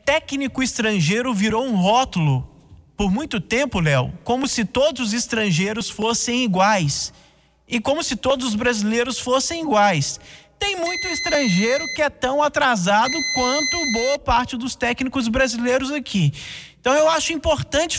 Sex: male